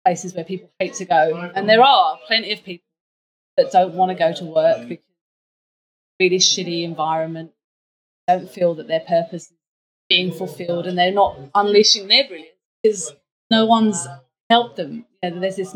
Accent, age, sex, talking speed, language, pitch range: British, 30-49, female, 180 wpm, English, 170-205 Hz